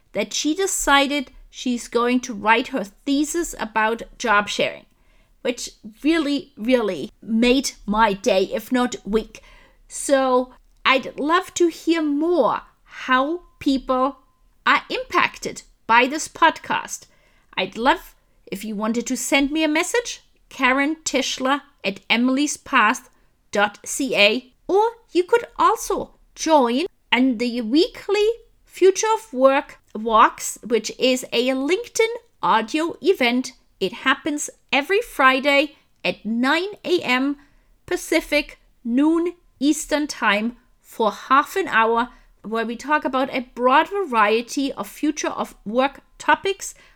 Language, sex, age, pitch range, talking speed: English, female, 30-49, 240-325 Hz, 120 wpm